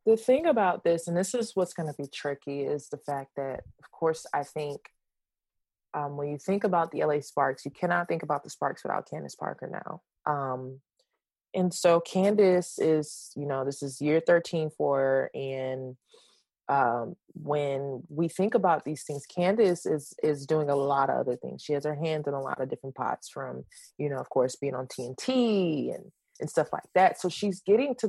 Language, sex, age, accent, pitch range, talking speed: English, female, 20-39, American, 135-180 Hz, 205 wpm